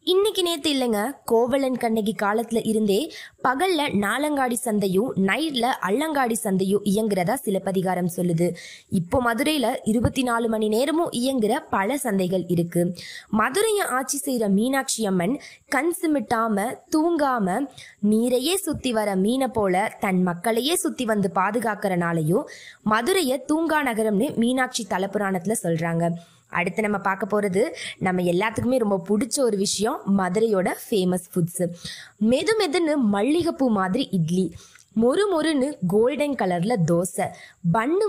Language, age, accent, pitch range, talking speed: Tamil, 20-39, native, 190-275 Hz, 110 wpm